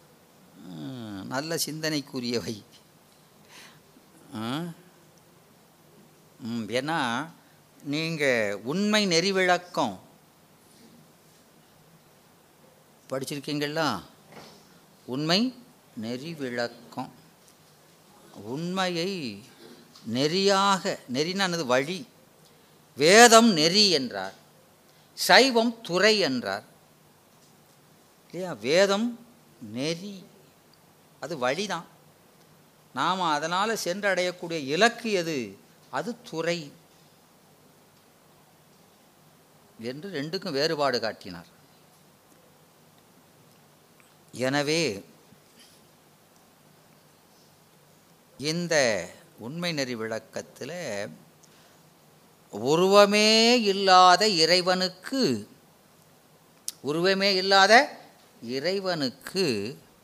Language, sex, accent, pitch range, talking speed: Tamil, female, native, 140-195 Hz, 45 wpm